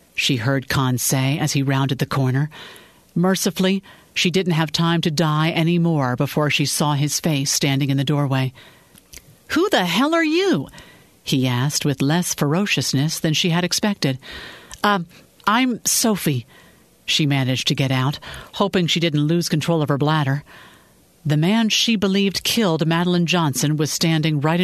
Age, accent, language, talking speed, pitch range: 50-69, American, English, 165 wpm, 140-190 Hz